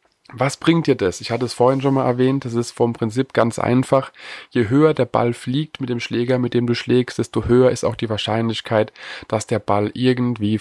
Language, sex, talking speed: German, male, 220 wpm